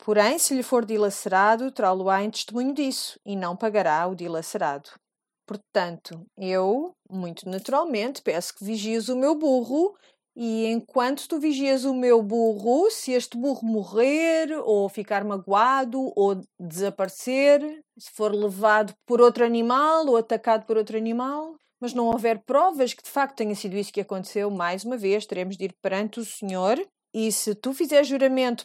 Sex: female